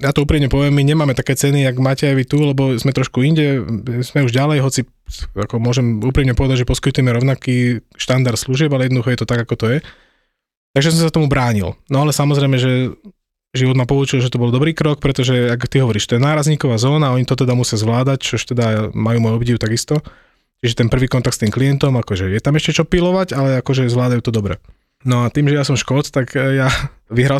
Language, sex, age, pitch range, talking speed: Slovak, male, 20-39, 120-140 Hz, 225 wpm